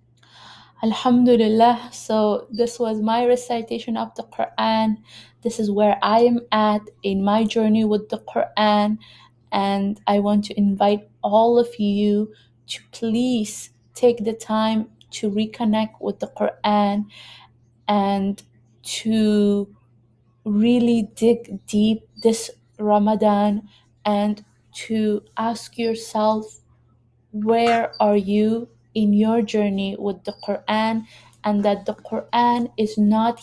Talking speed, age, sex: 115 wpm, 20-39, female